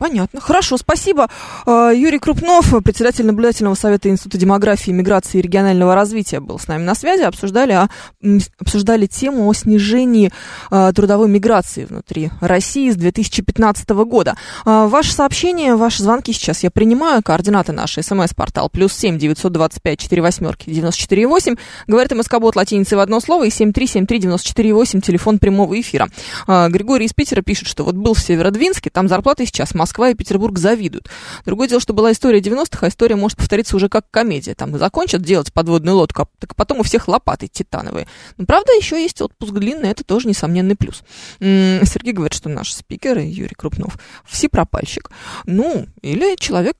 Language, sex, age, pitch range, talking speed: Russian, female, 20-39, 185-245 Hz, 170 wpm